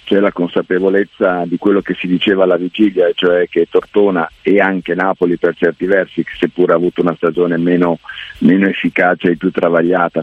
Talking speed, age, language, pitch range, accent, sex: 175 wpm, 50-69, Italian, 85-95 Hz, native, male